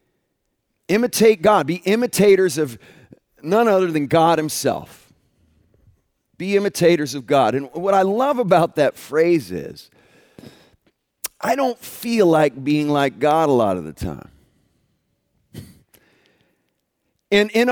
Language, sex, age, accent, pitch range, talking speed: English, male, 40-59, American, 145-200 Hz, 120 wpm